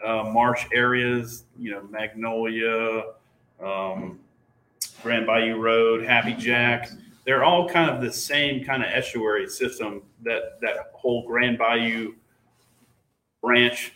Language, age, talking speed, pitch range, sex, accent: English, 30-49, 120 wpm, 115-135 Hz, male, American